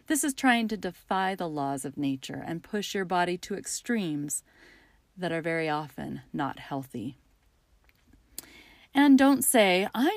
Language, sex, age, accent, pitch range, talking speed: English, female, 40-59, American, 175-240 Hz, 150 wpm